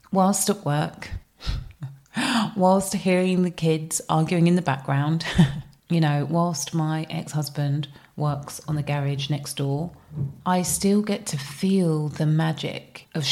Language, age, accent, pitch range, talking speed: English, 30-49, British, 150-180 Hz, 135 wpm